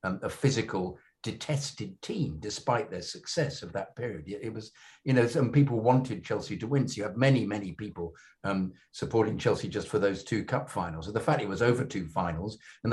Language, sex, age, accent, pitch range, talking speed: English, male, 50-69, British, 95-125 Hz, 205 wpm